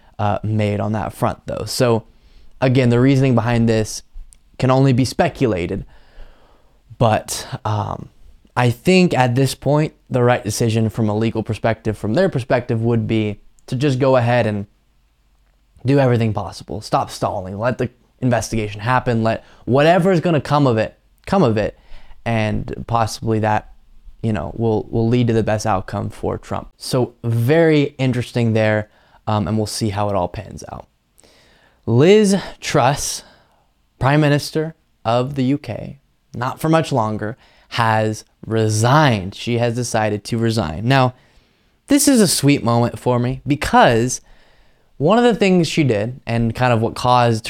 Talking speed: 160 wpm